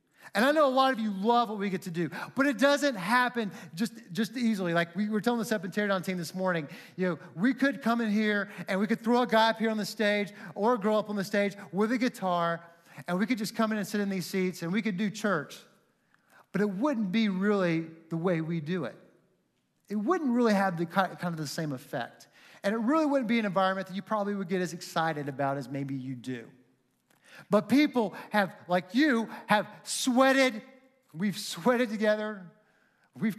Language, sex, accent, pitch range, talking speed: English, male, American, 170-230 Hz, 220 wpm